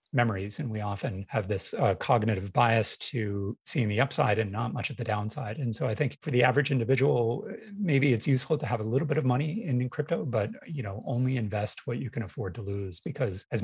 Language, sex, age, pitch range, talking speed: English, male, 30-49, 105-130 Hz, 230 wpm